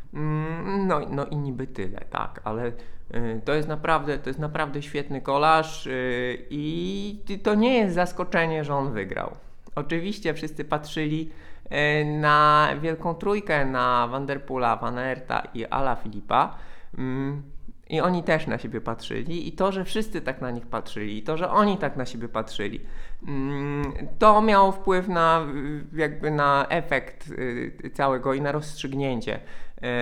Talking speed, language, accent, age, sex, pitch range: 145 wpm, Polish, native, 20-39, male, 135-170 Hz